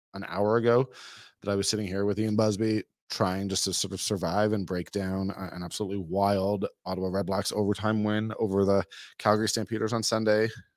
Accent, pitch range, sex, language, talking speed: American, 95-120 Hz, male, English, 190 wpm